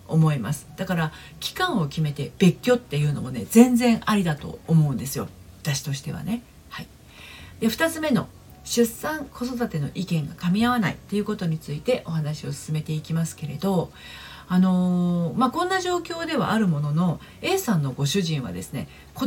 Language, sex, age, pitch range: Japanese, female, 40-59, 150-235 Hz